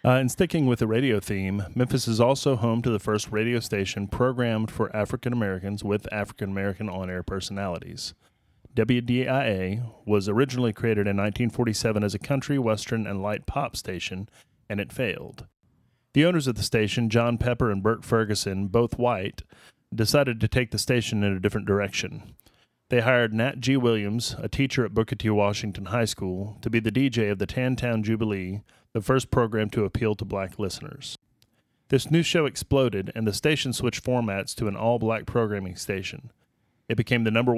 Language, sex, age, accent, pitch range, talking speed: English, male, 30-49, American, 105-125 Hz, 175 wpm